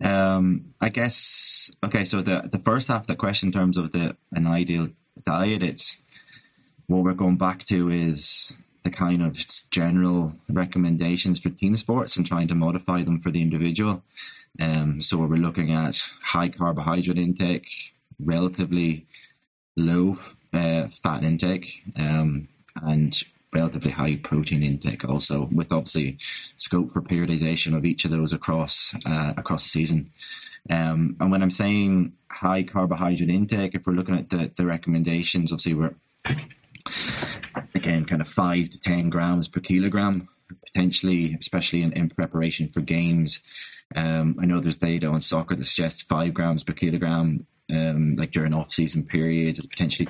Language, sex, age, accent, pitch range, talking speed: English, male, 20-39, British, 80-90 Hz, 155 wpm